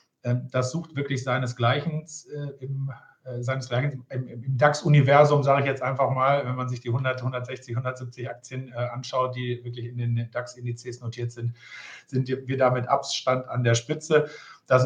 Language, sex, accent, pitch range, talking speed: German, male, German, 125-145 Hz, 150 wpm